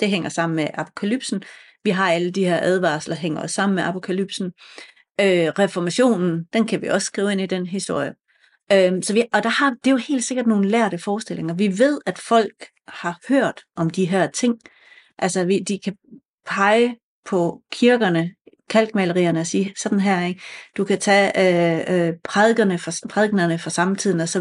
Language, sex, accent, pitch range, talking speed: Danish, female, native, 175-220 Hz, 180 wpm